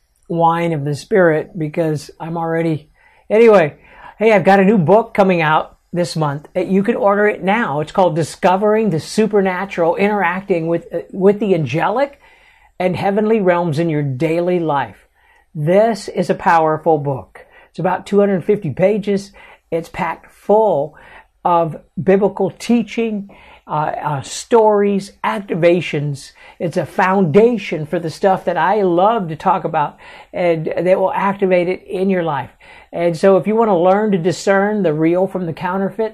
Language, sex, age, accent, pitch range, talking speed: English, male, 60-79, American, 165-200 Hz, 150 wpm